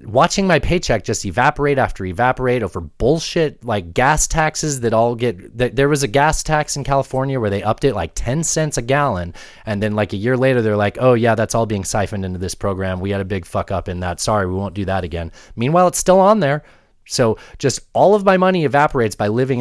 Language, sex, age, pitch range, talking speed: English, male, 30-49, 100-135 Hz, 235 wpm